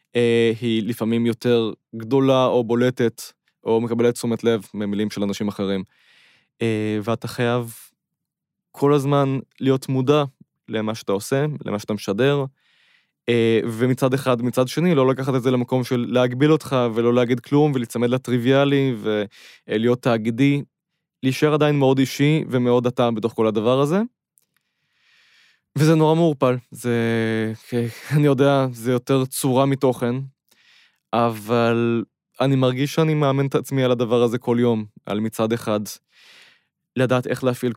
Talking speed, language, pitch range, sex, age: 130 wpm, Hebrew, 110-135 Hz, male, 20-39